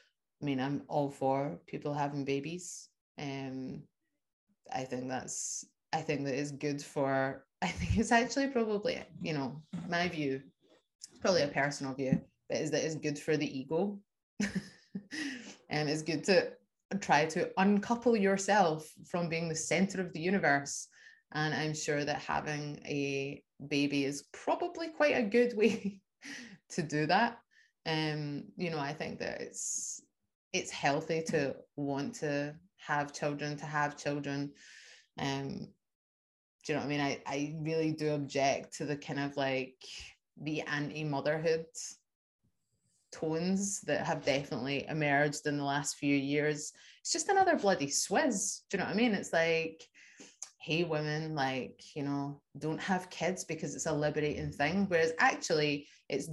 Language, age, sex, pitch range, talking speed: English, 20-39, female, 145-190 Hz, 155 wpm